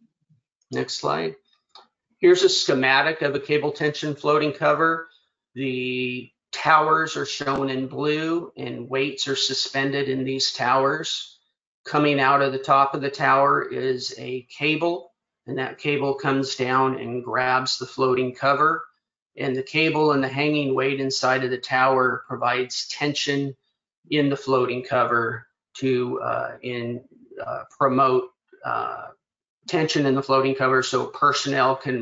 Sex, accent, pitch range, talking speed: male, American, 125-150 Hz, 140 wpm